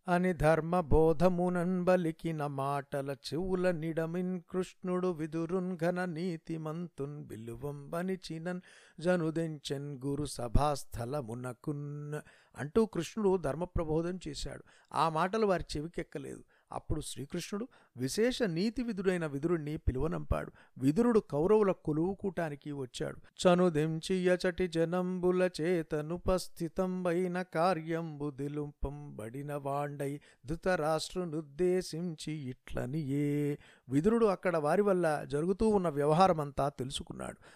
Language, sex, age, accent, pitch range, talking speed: Telugu, male, 50-69, native, 145-180 Hz, 85 wpm